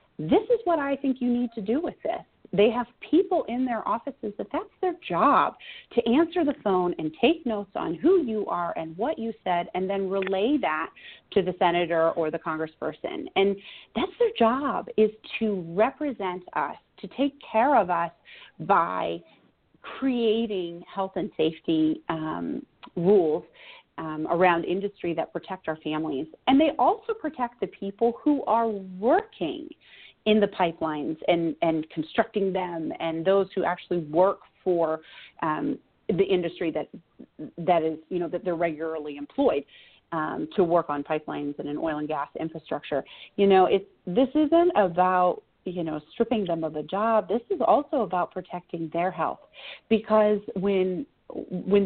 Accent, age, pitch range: American, 40-59, 170-255 Hz